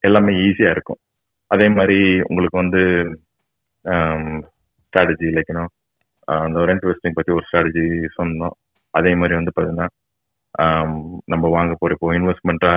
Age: 30-49